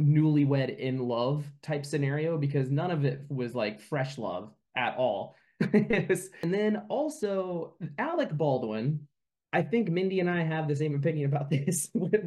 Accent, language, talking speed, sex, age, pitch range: American, English, 150 wpm, male, 20-39, 130-160 Hz